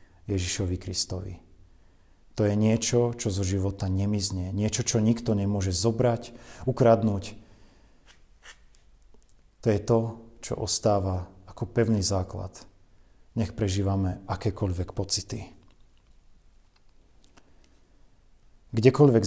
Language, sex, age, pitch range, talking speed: Slovak, male, 40-59, 90-110 Hz, 85 wpm